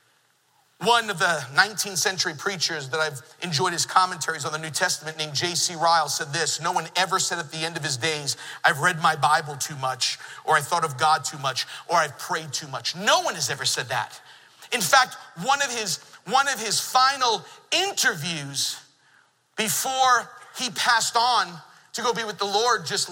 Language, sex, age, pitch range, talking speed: English, male, 40-59, 165-220 Hz, 190 wpm